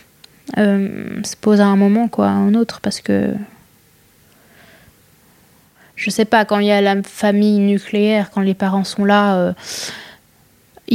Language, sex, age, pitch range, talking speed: French, female, 20-39, 200-225 Hz, 155 wpm